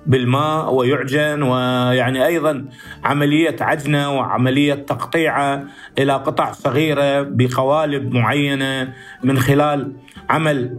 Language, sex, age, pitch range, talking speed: Arabic, male, 50-69, 135-155 Hz, 90 wpm